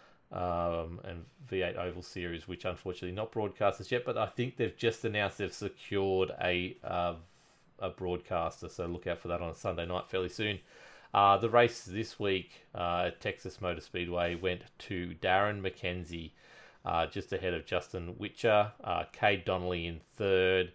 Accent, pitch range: Australian, 85-100 Hz